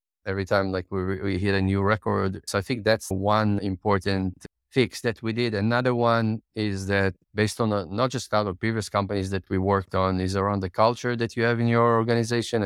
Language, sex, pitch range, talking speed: English, male, 95-115 Hz, 220 wpm